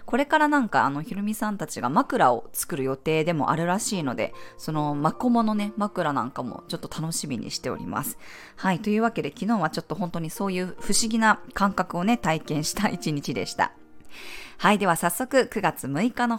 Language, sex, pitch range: Japanese, female, 165-245 Hz